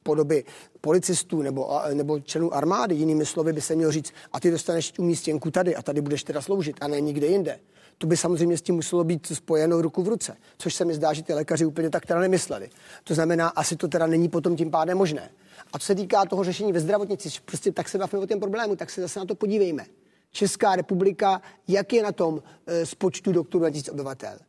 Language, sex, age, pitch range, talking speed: Czech, male, 30-49, 160-195 Hz, 215 wpm